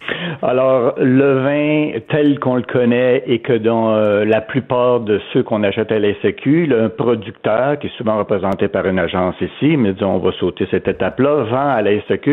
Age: 60-79